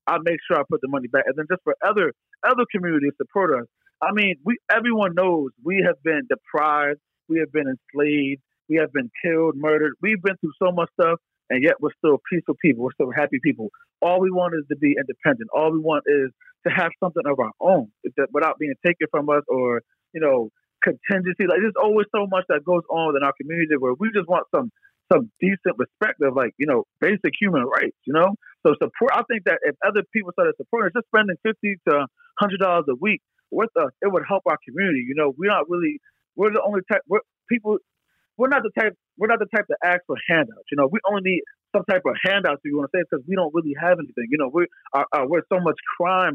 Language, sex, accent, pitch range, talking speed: English, male, American, 150-210 Hz, 235 wpm